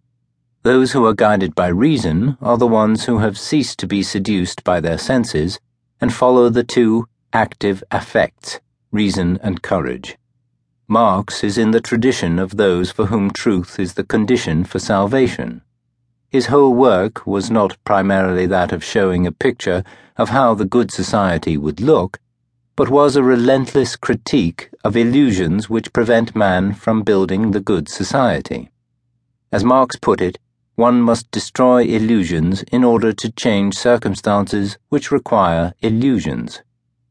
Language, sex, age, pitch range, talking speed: English, male, 60-79, 95-125 Hz, 145 wpm